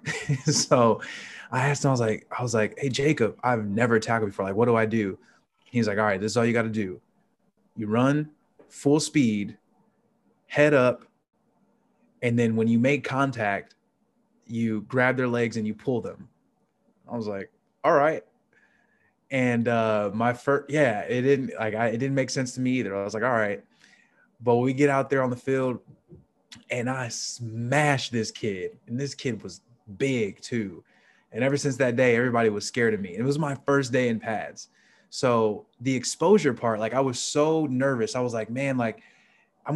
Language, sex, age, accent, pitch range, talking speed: English, male, 20-39, American, 115-140 Hz, 195 wpm